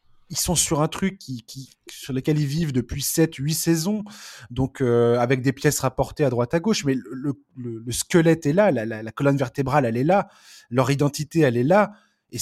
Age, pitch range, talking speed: 20-39, 125-155 Hz, 215 wpm